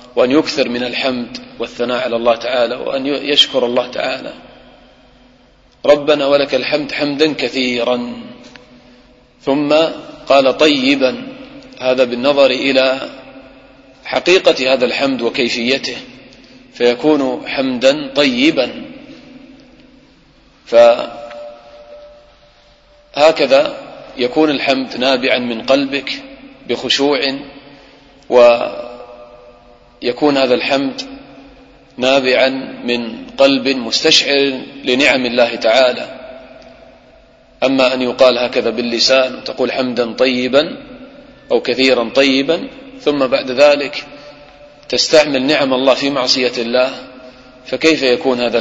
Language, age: English, 40-59